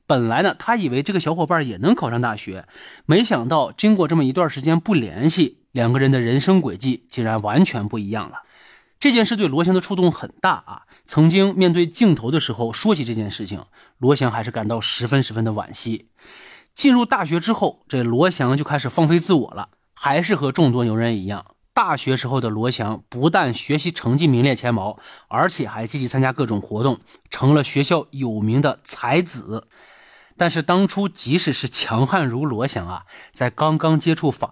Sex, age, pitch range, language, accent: male, 30-49, 115-165 Hz, Chinese, native